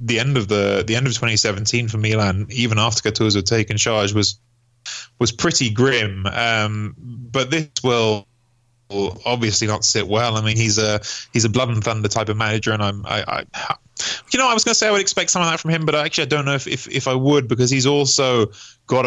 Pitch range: 105-120 Hz